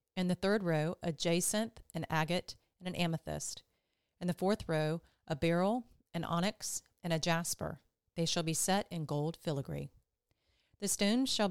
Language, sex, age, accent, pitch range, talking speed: English, female, 40-59, American, 160-195 Hz, 165 wpm